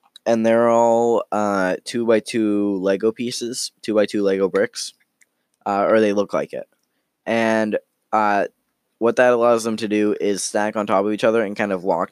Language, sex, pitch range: English, male, 100-115 Hz